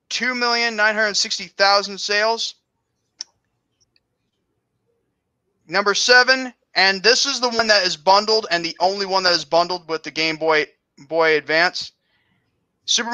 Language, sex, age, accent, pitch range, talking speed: English, male, 20-39, American, 175-215 Hz, 120 wpm